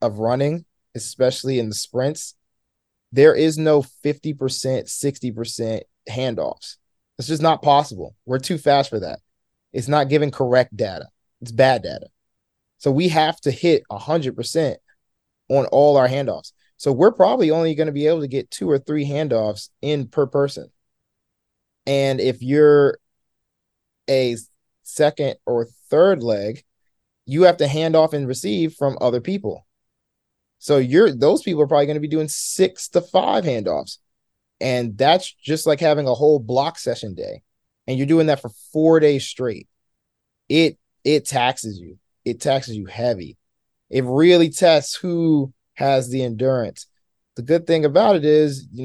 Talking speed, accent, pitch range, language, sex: 160 wpm, American, 125-155 Hz, English, male